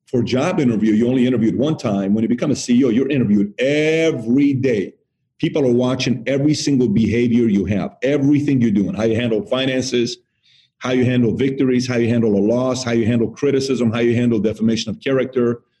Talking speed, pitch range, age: 195 wpm, 115-135 Hz, 40-59